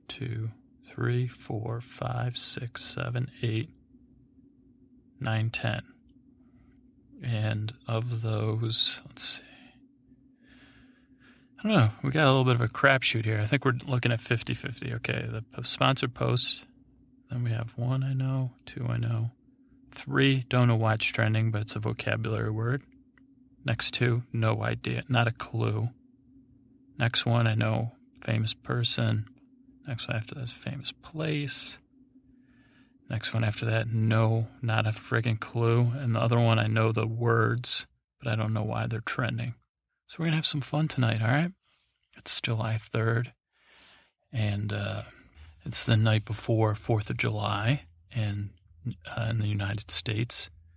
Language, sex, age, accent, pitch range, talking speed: English, male, 30-49, American, 110-130 Hz, 150 wpm